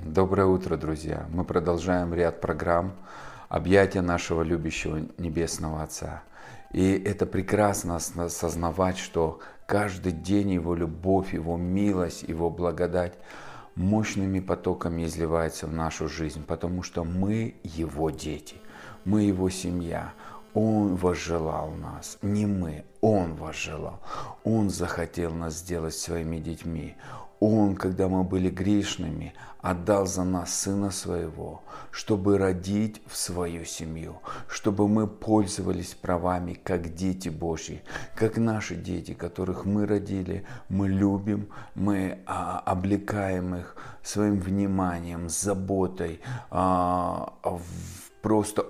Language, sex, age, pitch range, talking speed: Russian, male, 40-59, 85-100 Hz, 110 wpm